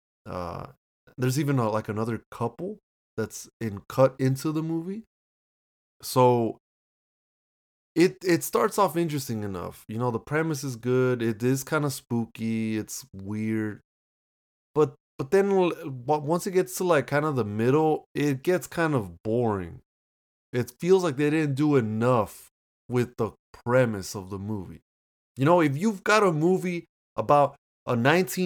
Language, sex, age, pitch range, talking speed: English, male, 20-39, 110-170 Hz, 155 wpm